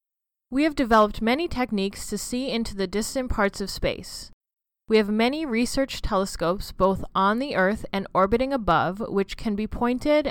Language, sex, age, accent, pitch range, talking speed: English, female, 20-39, American, 190-240 Hz, 170 wpm